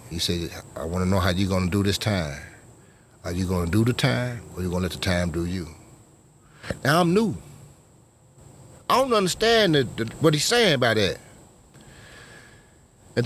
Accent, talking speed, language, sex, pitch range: American, 200 wpm, English, male, 85-120 Hz